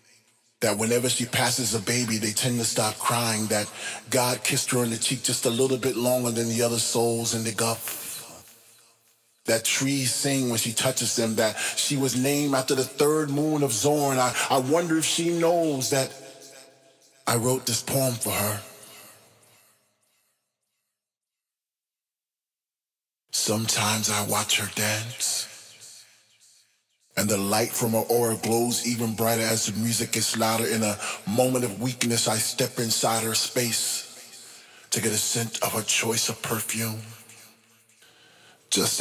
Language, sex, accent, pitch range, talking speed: English, male, American, 110-125 Hz, 150 wpm